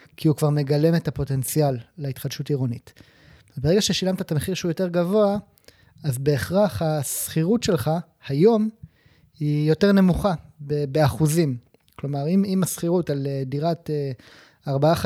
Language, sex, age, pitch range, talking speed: Hebrew, male, 30-49, 140-175 Hz, 130 wpm